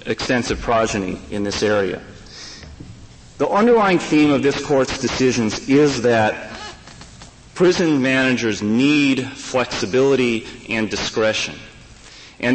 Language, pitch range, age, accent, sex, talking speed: English, 110-145 Hz, 40-59, American, male, 100 wpm